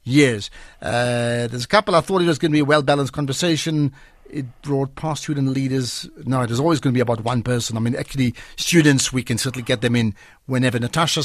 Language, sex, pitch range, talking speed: English, male, 125-160 Hz, 225 wpm